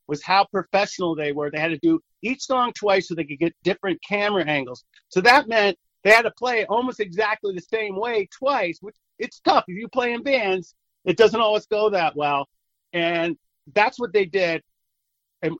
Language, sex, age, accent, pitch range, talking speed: English, male, 40-59, American, 165-240 Hz, 200 wpm